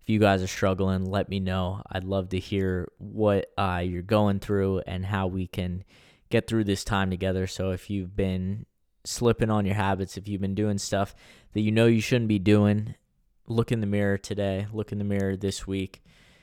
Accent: American